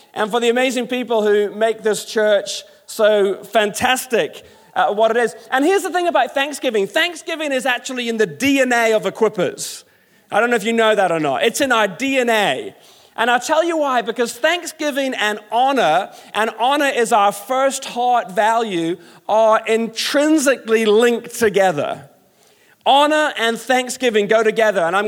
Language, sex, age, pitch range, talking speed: English, male, 40-59, 205-255 Hz, 165 wpm